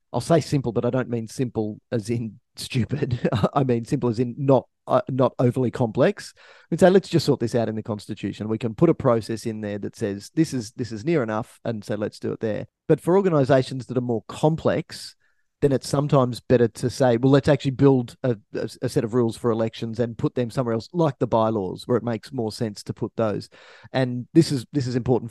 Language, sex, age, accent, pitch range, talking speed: English, male, 30-49, Australian, 115-140 Hz, 240 wpm